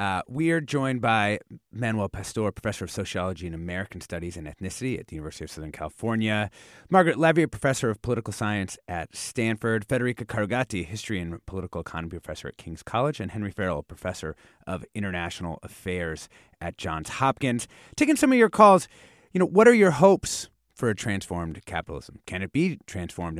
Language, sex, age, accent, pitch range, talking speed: English, male, 30-49, American, 85-125 Hz, 175 wpm